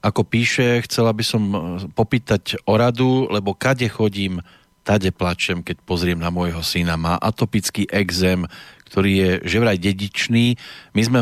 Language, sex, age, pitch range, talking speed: Slovak, male, 40-59, 100-115 Hz, 150 wpm